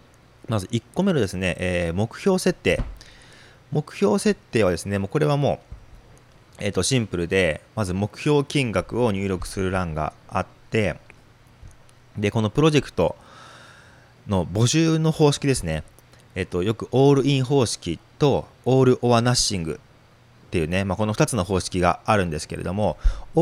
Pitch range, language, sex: 90-140 Hz, Japanese, male